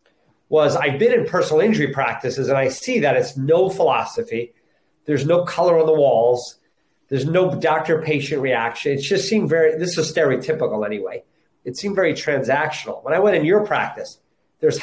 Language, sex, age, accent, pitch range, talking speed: English, male, 30-49, American, 145-195 Hz, 175 wpm